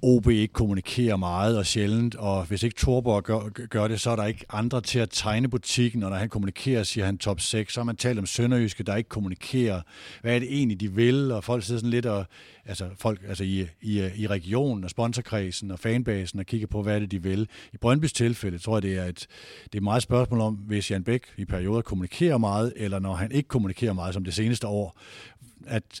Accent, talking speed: native, 235 wpm